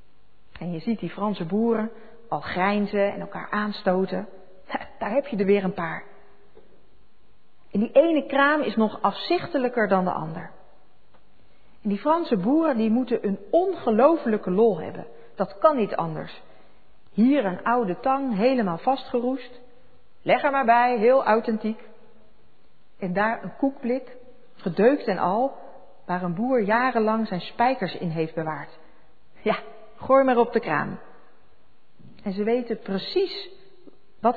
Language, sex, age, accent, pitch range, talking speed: Dutch, female, 40-59, Dutch, 190-255 Hz, 140 wpm